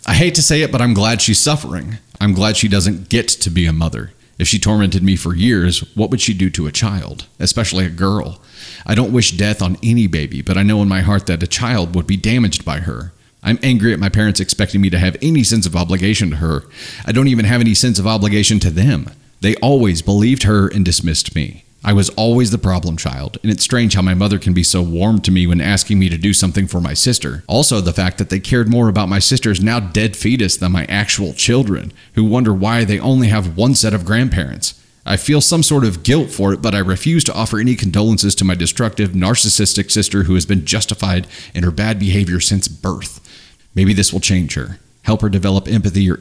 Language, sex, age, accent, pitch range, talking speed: English, male, 30-49, American, 95-115 Hz, 235 wpm